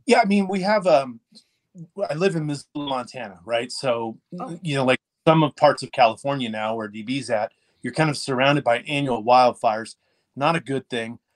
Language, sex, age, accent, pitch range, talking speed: English, male, 30-49, American, 125-155 Hz, 190 wpm